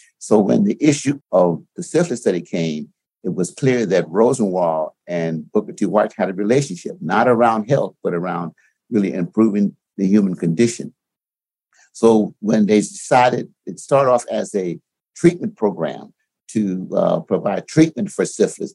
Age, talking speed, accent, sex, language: 60-79, 155 wpm, American, male, English